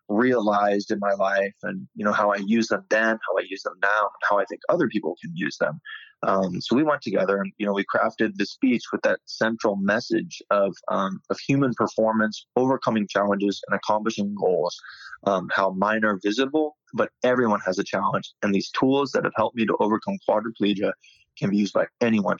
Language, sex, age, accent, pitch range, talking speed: English, male, 20-39, American, 100-115 Hz, 205 wpm